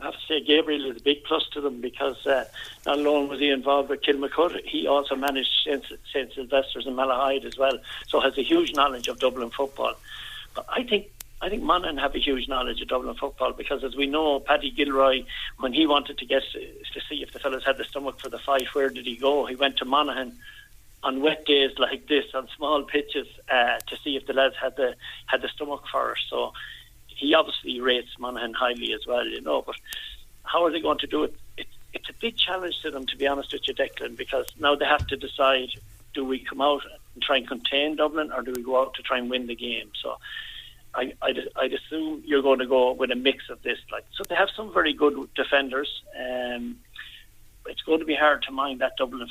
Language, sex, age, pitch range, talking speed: English, male, 60-79, 130-150 Hz, 235 wpm